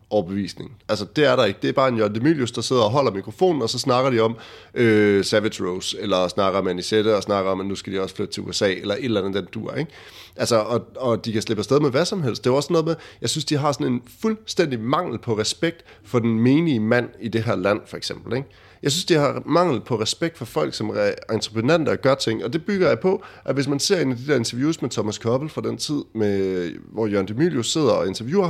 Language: Danish